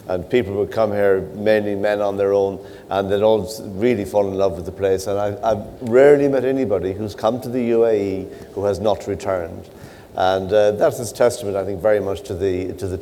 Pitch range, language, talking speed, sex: 95-115 Hz, English, 220 wpm, male